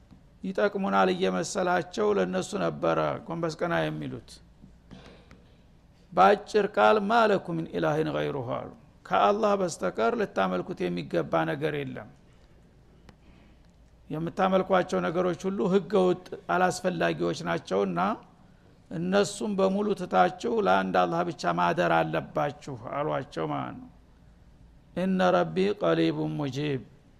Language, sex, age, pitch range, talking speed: Amharic, male, 60-79, 140-190 Hz, 65 wpm